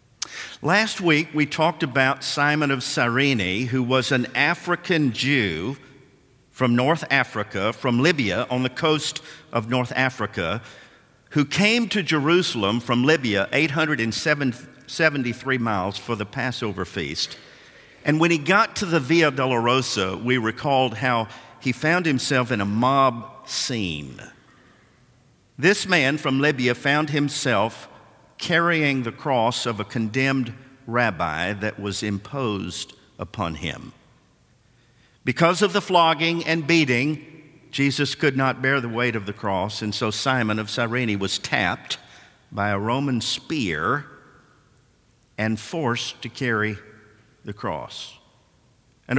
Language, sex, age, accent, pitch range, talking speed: English, male, 50-69, American, 115-150 Hz, 130 wpm